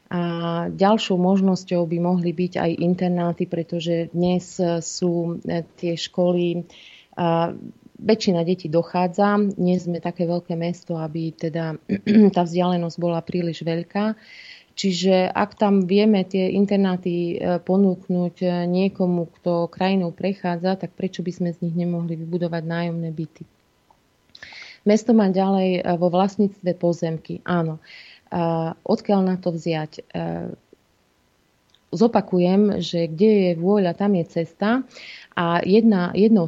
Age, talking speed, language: 30-49, 120 wpm, Slovak